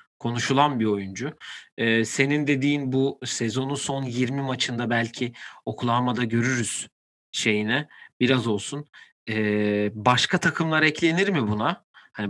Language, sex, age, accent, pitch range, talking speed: Turkish, male, 40-59, native, 110-145 Hz, 115 wpm